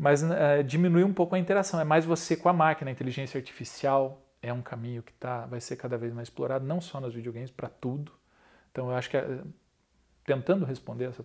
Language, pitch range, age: Portuguese, 125-155 Hz, 40-59